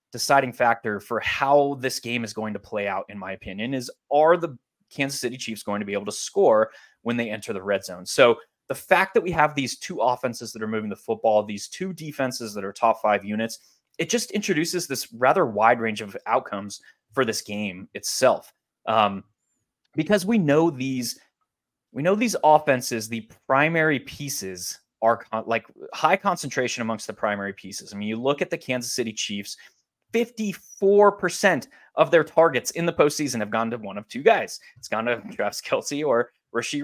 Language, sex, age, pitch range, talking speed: English, male, 20-39, 110-155 Hz, 190 wpm